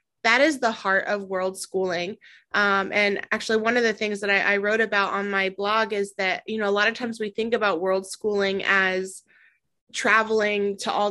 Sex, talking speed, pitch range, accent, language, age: female, 210 wpm, 200-225 Hz, American, English, 20-39